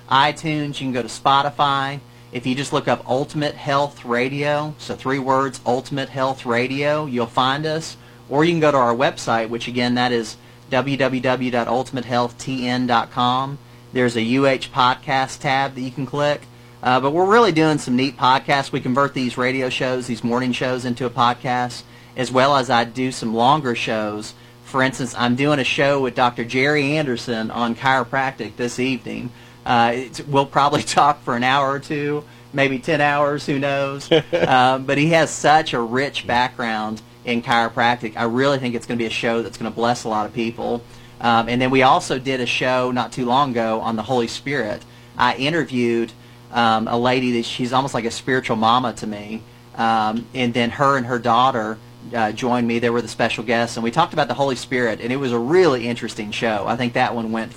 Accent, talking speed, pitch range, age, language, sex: American, 200 wpm, 120-135 Hz, 40-59, English, male